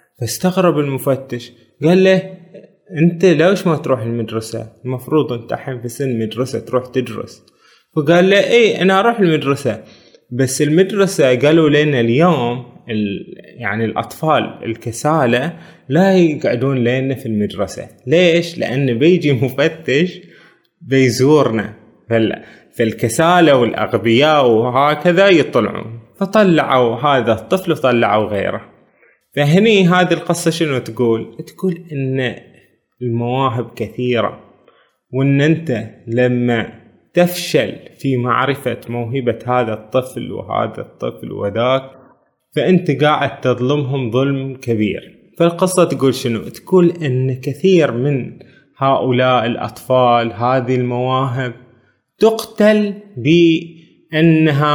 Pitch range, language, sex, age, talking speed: 120-165 Hz, Arabic, male, 20-39, 100 wpm